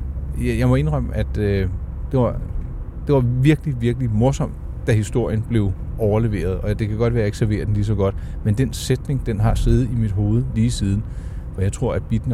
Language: Danish